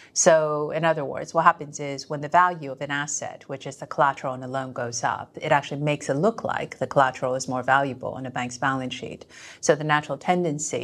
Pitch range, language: 130-150 Hz, English